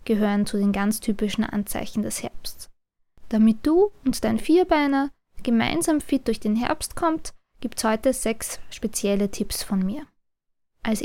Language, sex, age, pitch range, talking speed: German, female, 20-39, 220-280 Hz, 145 wpm